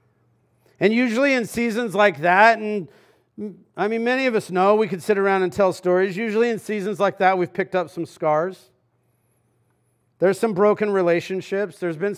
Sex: male